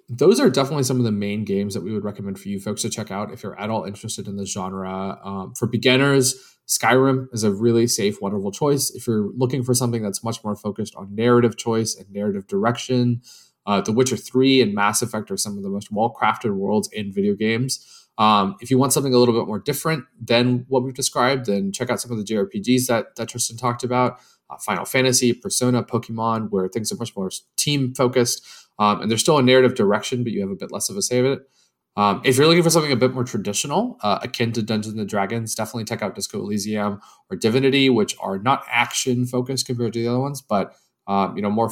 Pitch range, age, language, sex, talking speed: 105-130 Hz, 20-39, English, male, 230 wpm